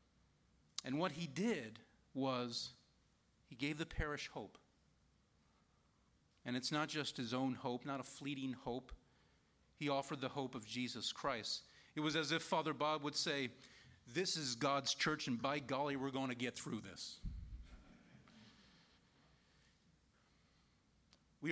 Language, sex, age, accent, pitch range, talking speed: English, male, 40-59, American, 120-155 Hz, 140 wpm